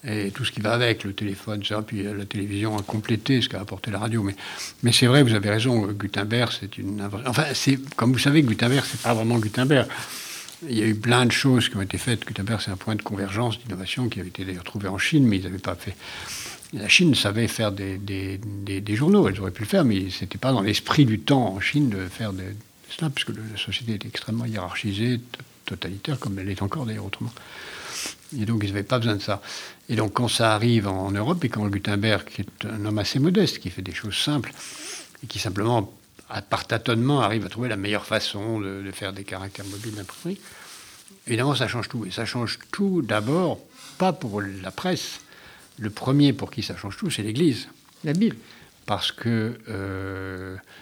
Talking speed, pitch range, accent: 215 wpm, 100-120 Hz, French